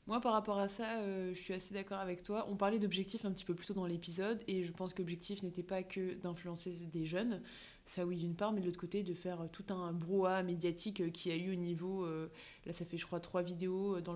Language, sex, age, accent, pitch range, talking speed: French, female, 20-39, French, 175-200 Hz, 265 wpm